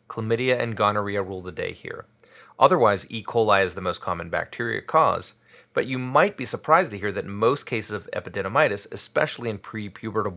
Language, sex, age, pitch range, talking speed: English, male, 30-49, 100-125 Hz, 180 wpm